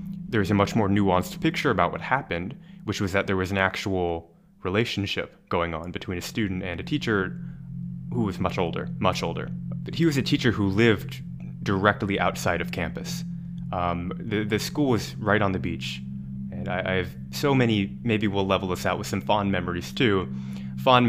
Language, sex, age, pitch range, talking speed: English, male, 20-39, 90-125 Hz, 195 wpm